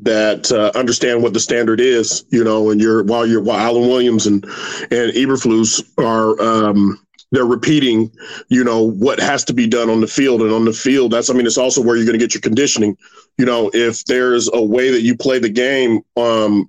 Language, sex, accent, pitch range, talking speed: English, male, American, 120-160 Hz, 220 wpm